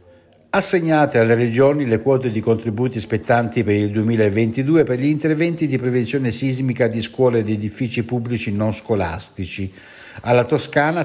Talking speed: 140 wpm